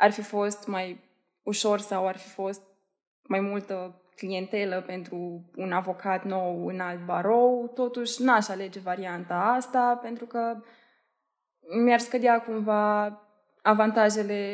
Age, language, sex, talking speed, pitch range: 20-39, Romanian, female, 125 wpm, 190-235 Hz